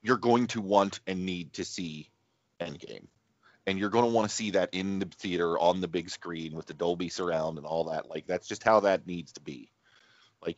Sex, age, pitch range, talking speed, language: male, 30-49, 90-115 Hz, 225 wpm, English